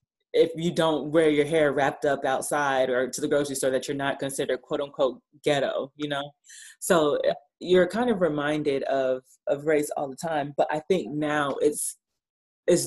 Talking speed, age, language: 185 wpm, 30-49, English